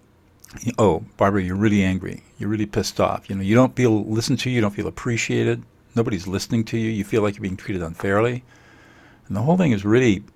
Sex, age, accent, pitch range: male, 50-69, American, 100-120 Hz